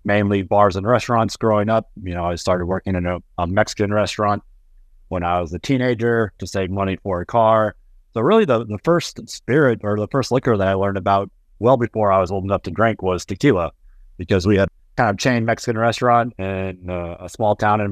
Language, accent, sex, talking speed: English, American, male, 220 wpm